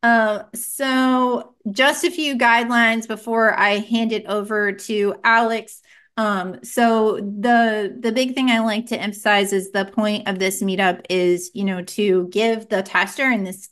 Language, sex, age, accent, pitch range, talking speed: English, female, 30-49, American, 200-240 Hz, 165 wpm